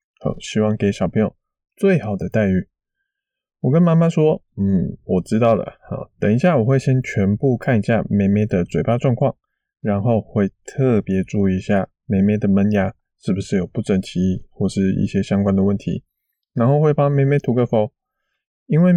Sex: male